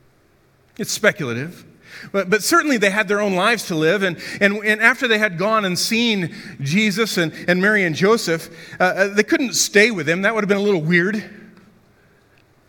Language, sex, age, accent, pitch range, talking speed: English, male, 40-59, American, 185-225 Hz, 190 wpm